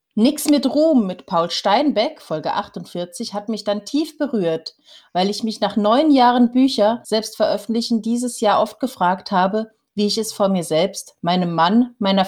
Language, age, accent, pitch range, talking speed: German, 30-49, German, 185-255 Hz, 175 wpm